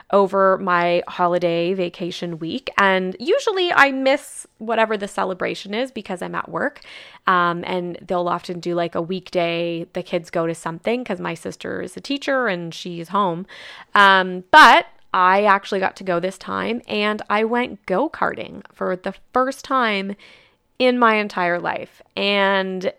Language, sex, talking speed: English, female, 160 wpm